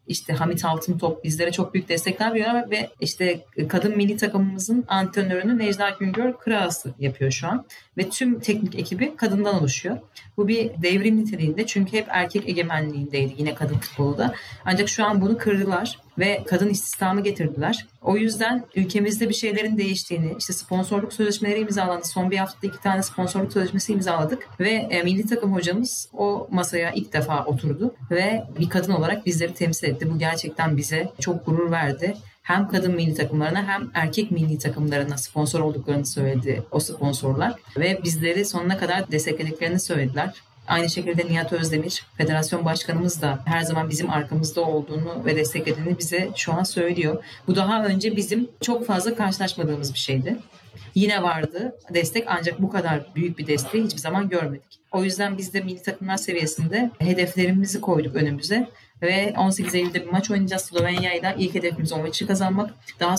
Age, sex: 30-49, female